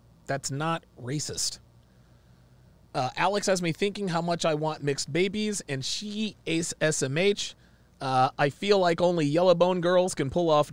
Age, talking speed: 30-49, 160 wpm